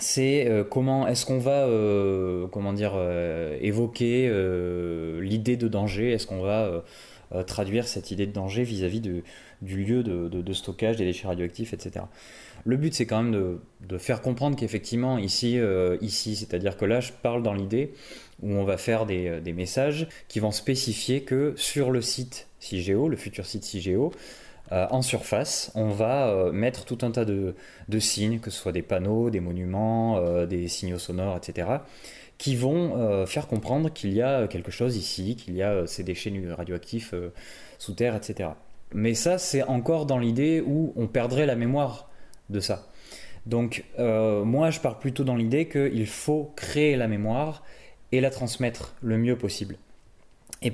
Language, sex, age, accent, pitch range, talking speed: French, male, 20-39, French, 95-125 Hz, 175 wpm